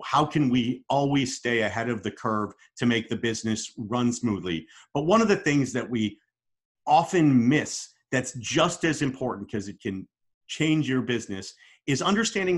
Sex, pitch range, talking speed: male, 110-135 Hz, 170 wpm